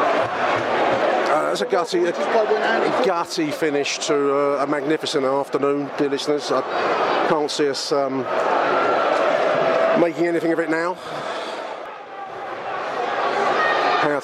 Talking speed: 100 wpm